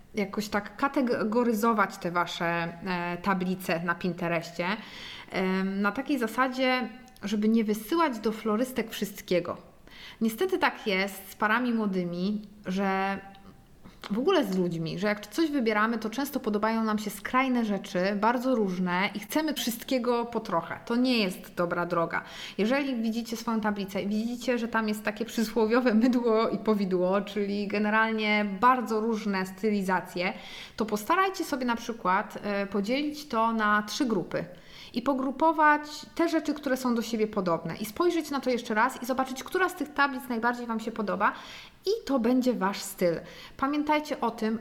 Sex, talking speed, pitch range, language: female, 150 wpm, 195-255 Hz, Polish